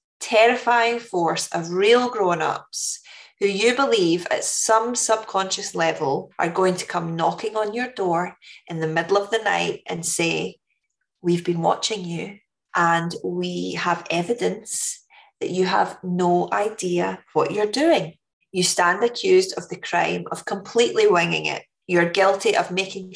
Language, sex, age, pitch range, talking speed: English, female, 20-39, 170-215 Hz, 150 wpm